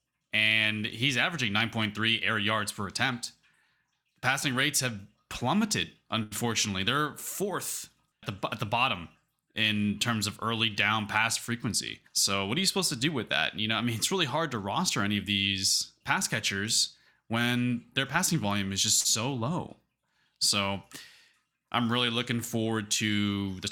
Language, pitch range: English, 100-120 Hz